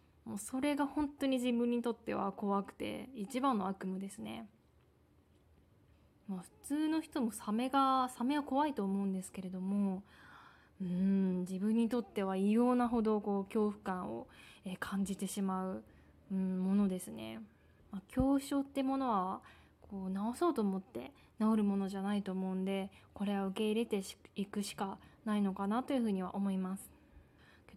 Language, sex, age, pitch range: Japanese, female, 20-39, 190-230 Hz